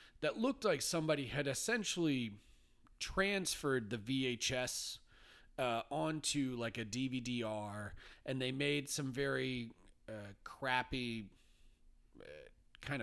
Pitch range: 110-140 Hz